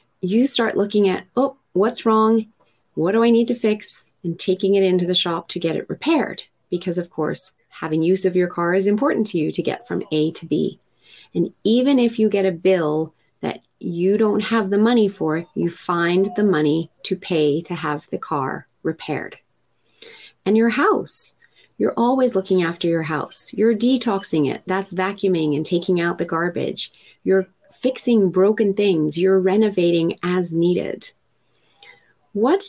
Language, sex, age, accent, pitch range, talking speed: English, female, 30-49, American, 175-225 Hz, 175 wpm